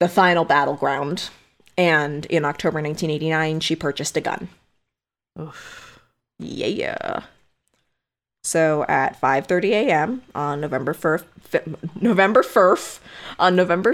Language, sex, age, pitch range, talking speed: English, female, 20-39, 155-185 Hz, 110 wpm